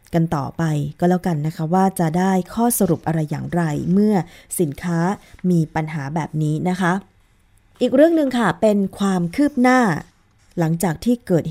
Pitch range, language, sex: 155-195 Hz, Thai, female